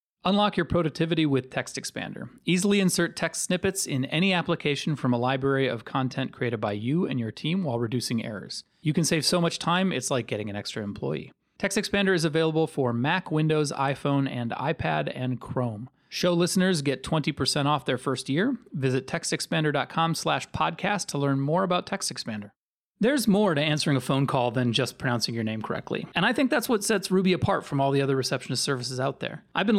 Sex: male